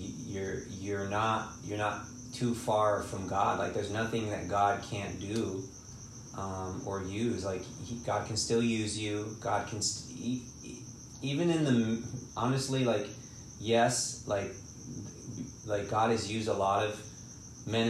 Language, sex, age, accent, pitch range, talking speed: English, male, 30-49, American, 100-120 Hz, 150 wpm